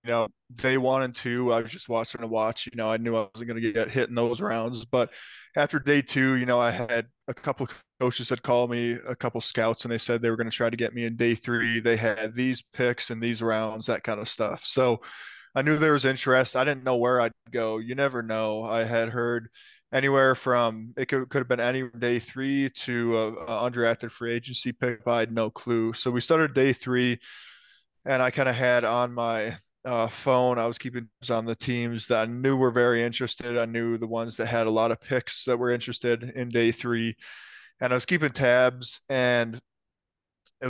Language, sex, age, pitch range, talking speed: English, male, 20-39, 115-130 Hz, 235 wpm